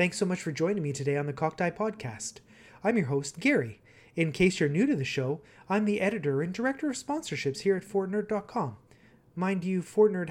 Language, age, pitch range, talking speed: English, 30-49, 135-190 Hz, 205 wpm